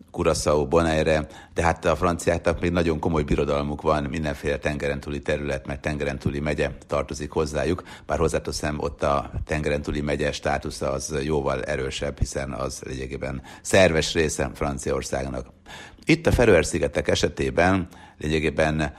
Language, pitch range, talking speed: Hungarian, 70-85 Hz, 120 wpm